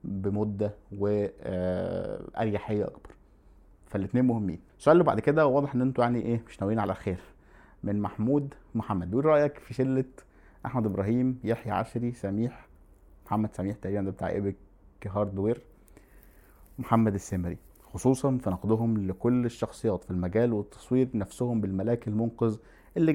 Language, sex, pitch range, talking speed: Arabic, male, 100-120 Hz, 135 wpm